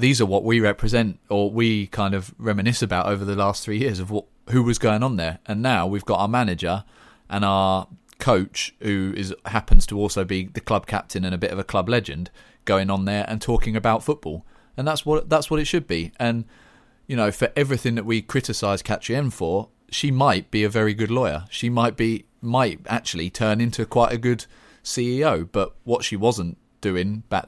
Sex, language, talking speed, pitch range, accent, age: male, English, 215 wpm, 95-115 Hz, British, 30-49